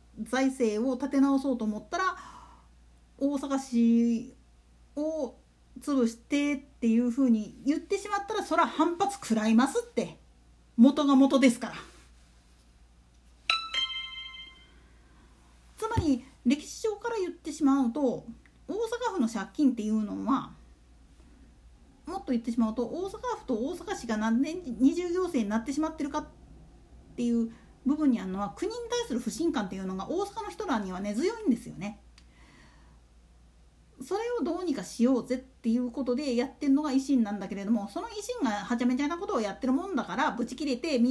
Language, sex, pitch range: Japanese, female, 220-305 Hz